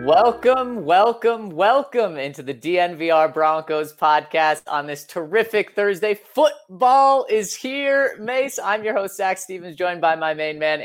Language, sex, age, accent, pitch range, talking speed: English, male, 30-49, American, 120-175 Hz, 145 wpm